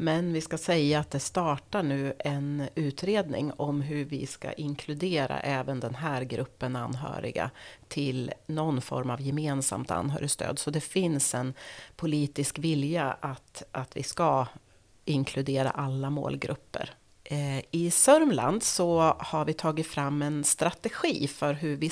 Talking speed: 140 wpm